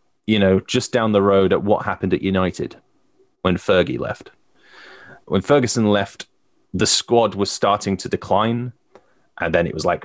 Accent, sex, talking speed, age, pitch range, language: British, male, 165 wpm, 20-39, 95-110 Hz, English